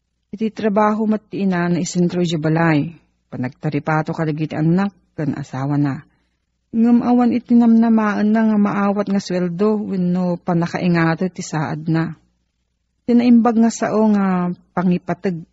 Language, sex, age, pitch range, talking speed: Filipino, female, 40-59, 160-210 Hz, 130 wpm